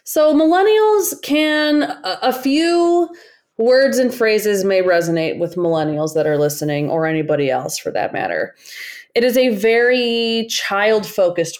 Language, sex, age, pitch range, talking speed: English, female, 20-39, 165-235 Hz, 135 wpm